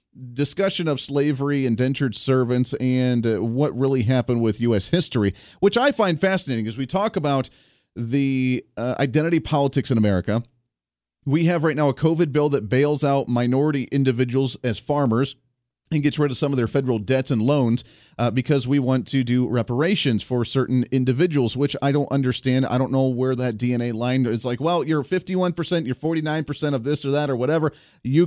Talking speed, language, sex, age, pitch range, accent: 190 wpm, English, male, 30-49, 125-160 Hz, American